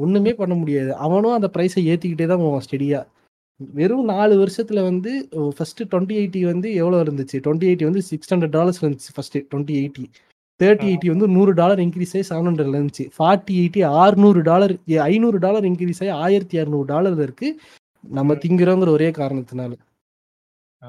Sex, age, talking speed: male, 20-39, 145 wpm